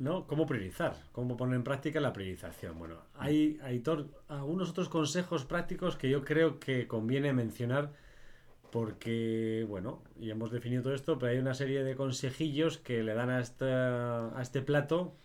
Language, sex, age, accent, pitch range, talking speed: Spanish, male, 30-49, Spanish, 110-135 Hz, 175 wpm